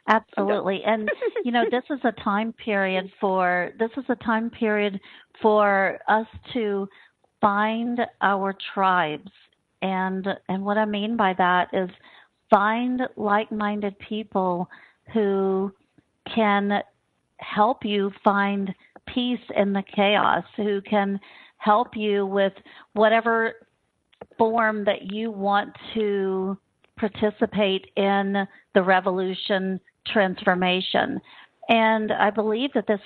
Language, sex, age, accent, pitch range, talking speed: English, female, 50-69, American, 195-220 Hz, 115 wpm